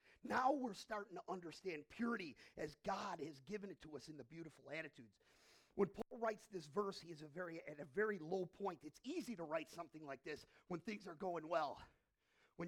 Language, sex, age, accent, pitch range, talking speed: English, male, 40-59, American, 155-230 Hz, 210 wpm